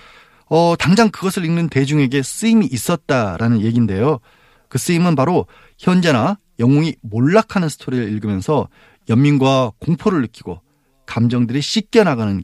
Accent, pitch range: native, 115-165 Hz